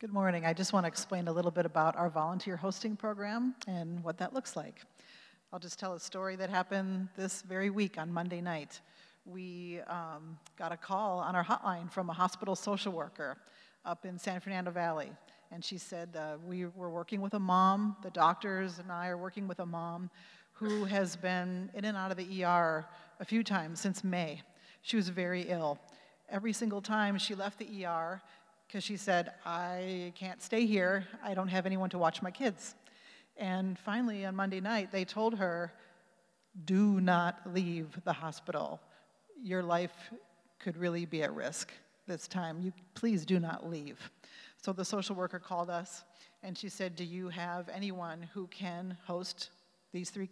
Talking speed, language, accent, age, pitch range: 185 wpm, English, American, 40-59, 175-195 Hz